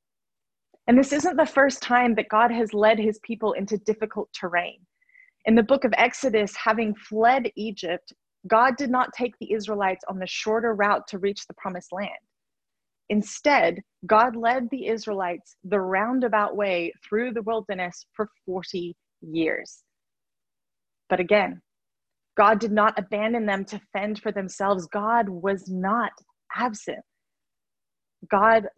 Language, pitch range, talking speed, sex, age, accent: English, 200-235 Hz, 140 wpm, female, 30-49, American